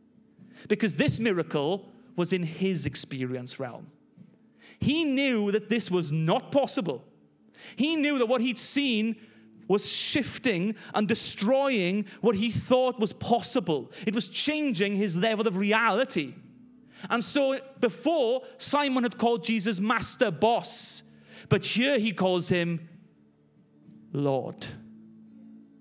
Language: English